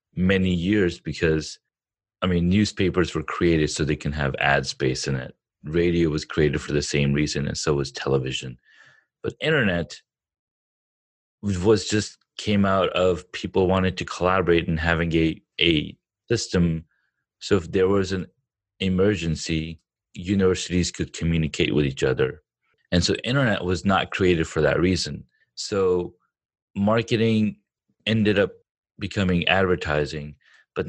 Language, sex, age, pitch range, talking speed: English, male, 30-49, 80-100 Hz, 140 wpm